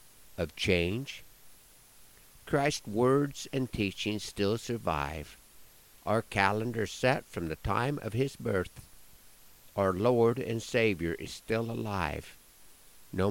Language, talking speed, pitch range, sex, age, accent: English, 115 wpm, 90-115 Hz, male, 60-79, American